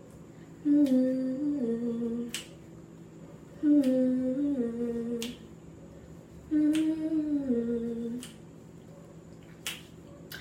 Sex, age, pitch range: female, 20-39, 235-345 Hz